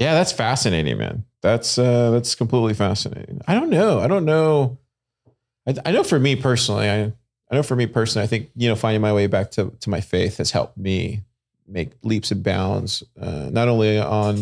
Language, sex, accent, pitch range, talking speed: English, male, American, 105-125 Hz, 210 wpm